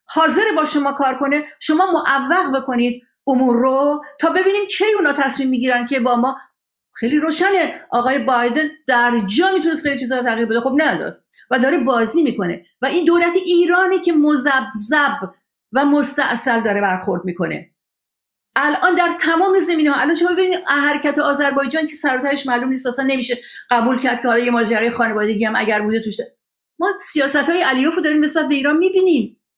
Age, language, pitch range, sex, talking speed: 50-69, Persian, 255-330 Hz, female, 150 wpm